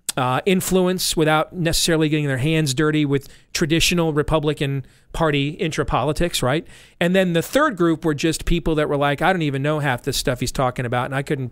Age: 40-59